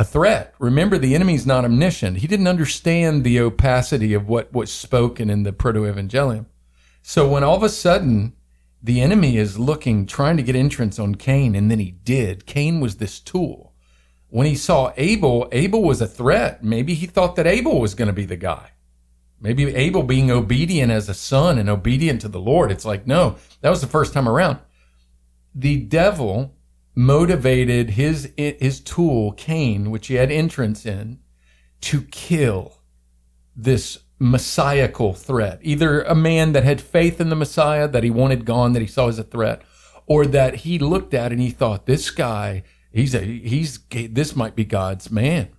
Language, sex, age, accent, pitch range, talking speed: English, male, 50-69, American, 105-145 Hz, 180 wpm